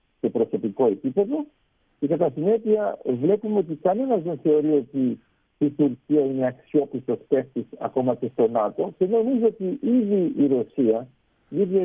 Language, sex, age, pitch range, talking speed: Greek, male, 60-79, 135-210 Hz, 140 wpm